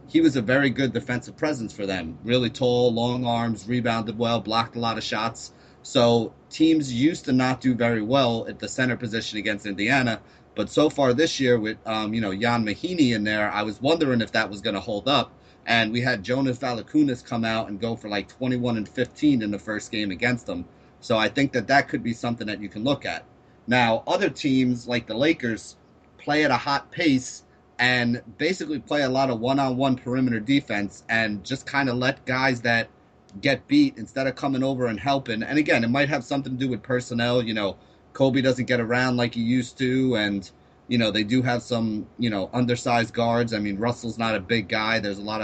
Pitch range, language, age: 110-130 Hz, English, 30-49